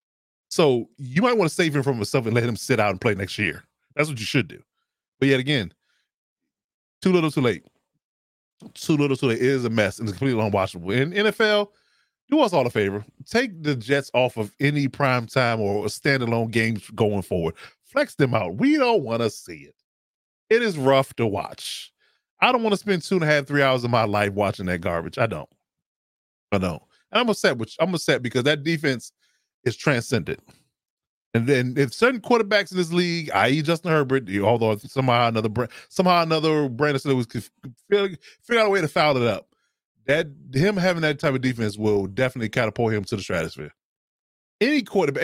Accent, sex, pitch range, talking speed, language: American, male, 110-160 Hz, 195 wpm, English